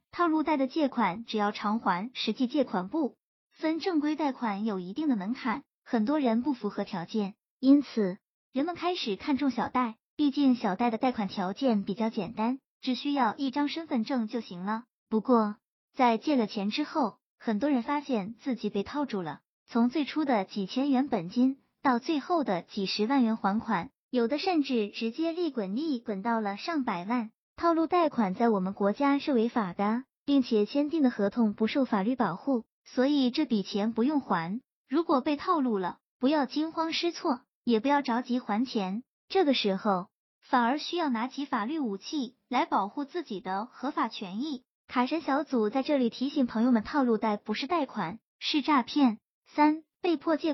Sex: male